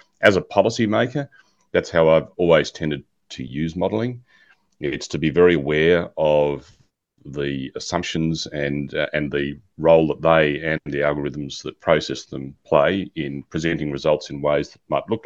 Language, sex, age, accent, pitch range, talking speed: English, male, 40-59, Australian, 70-80 Hz, 160 wpm